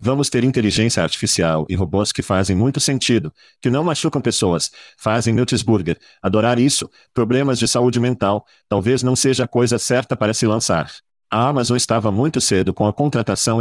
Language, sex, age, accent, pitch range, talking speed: Portuguese, male, 50-69, Brazilian, 100-125 Hz, 170 wpm